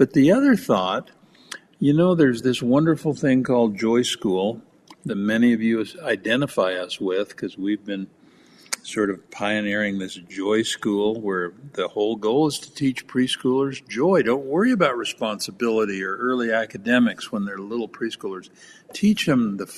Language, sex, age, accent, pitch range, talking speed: English, male, 60-79, American, 105-145 Hz, 160 wpm